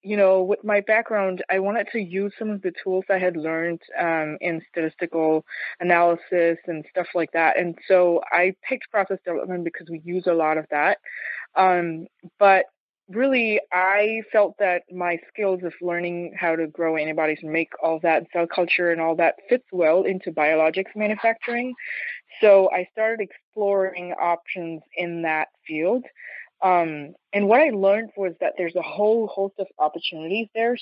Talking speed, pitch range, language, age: 170 wpm, 165-195 Hz, English, 20-39